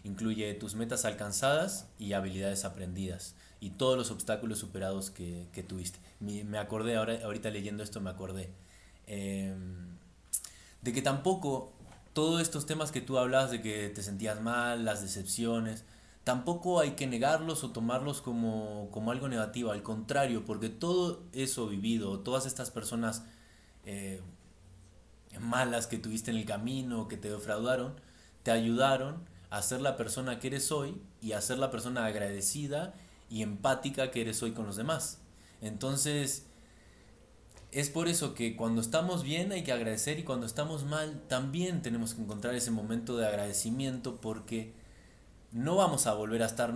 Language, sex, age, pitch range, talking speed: Spanish, male, 20-39, 105-130 Hz, 155 wpm